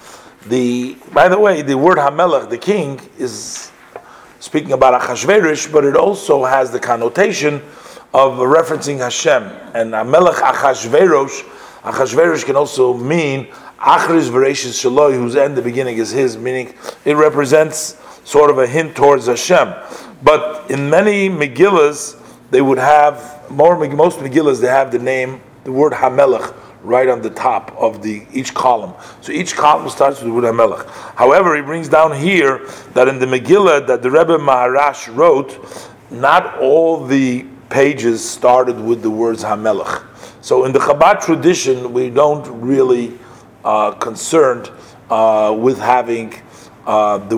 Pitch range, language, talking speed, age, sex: 120-150 Hz, English, 150 wpm, 40-59, male